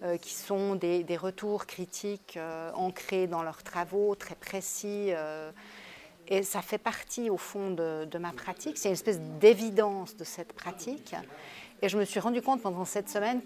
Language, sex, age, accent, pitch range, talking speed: French, female, 40-59, French, 175-205 Hz, 180 wpm